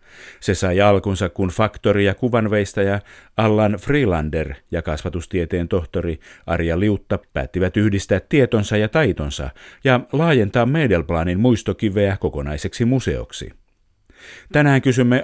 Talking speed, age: 105 wpm, 50-69